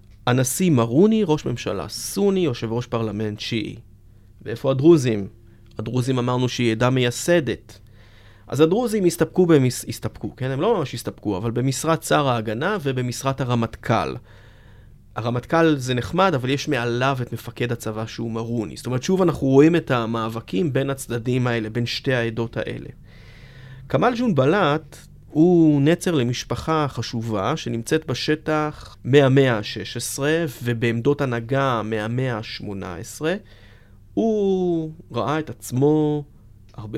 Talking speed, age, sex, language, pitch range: 125 wpm, 30-49, male, Hebrew, 110-150 Hz